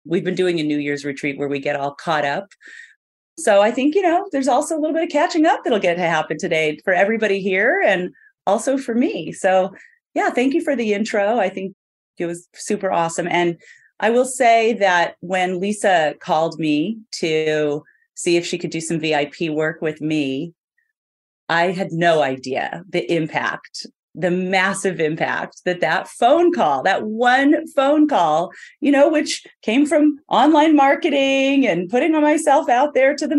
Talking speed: 185 wpm